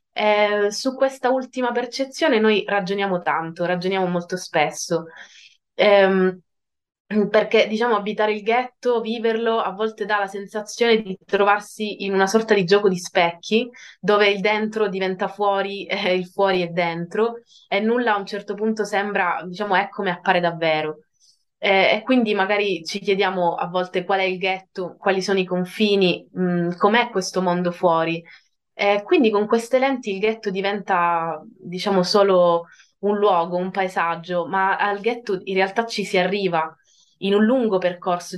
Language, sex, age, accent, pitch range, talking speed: Italian, female, 20-39, native, 175-210 Hz, 160 wpm